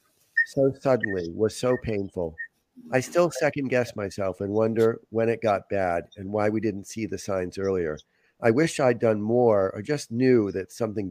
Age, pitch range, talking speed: 40-59, 105-135 Hz, 185 wpm